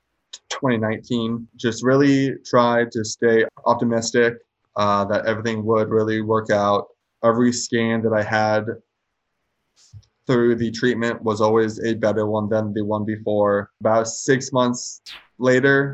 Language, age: English, 20-39